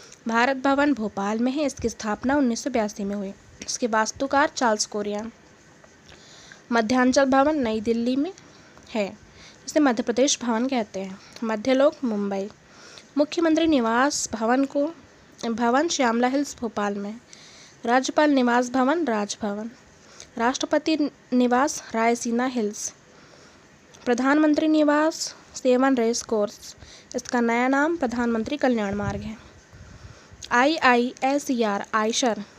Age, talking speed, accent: 20-39, 115 wpm, native